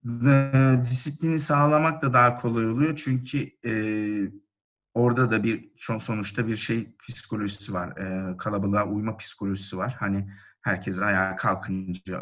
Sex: male